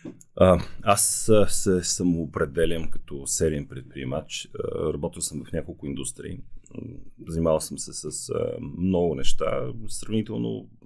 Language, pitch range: Bulgarian, 75-95 Hz